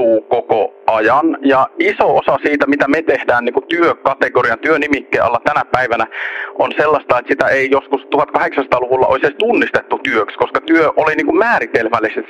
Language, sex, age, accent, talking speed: Finnish, male, 40-59, native, 145 wpm